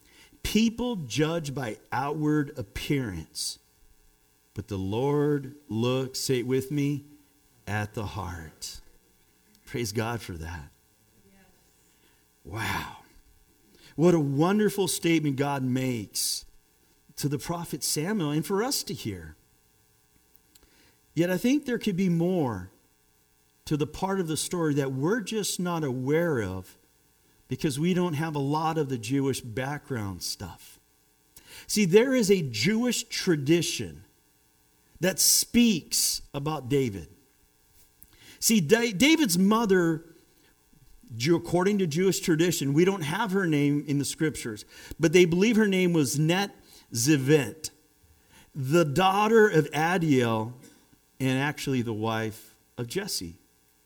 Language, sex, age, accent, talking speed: English, male, 50-69, American, 120 wpm